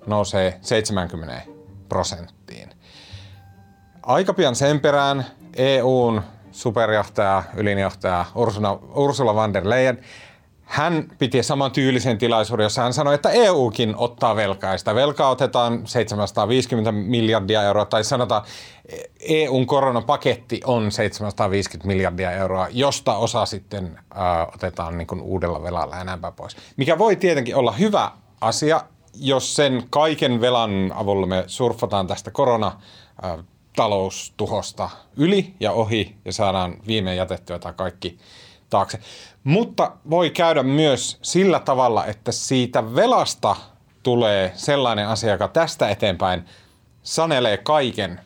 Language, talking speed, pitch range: Finnish, 115 wpm, 95-135 Hz